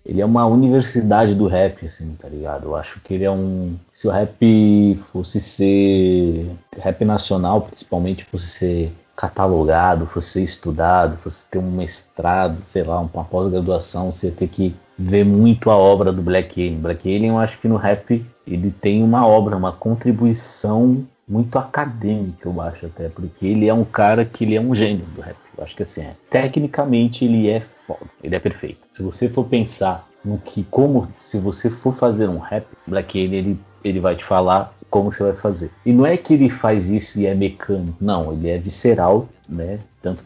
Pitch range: 90-110 Hz